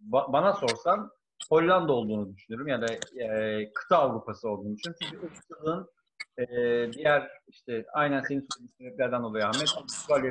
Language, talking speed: Turkish, 140 wpm